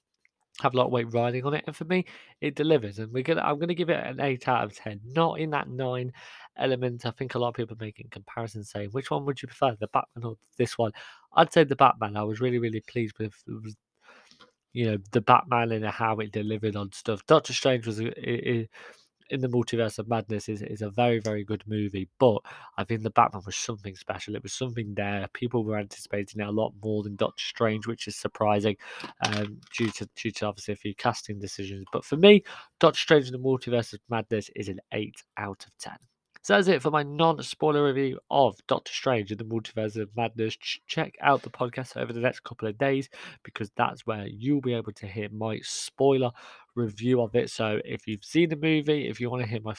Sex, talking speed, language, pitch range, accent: male, 225 wpm, English, 110-130 Hz, British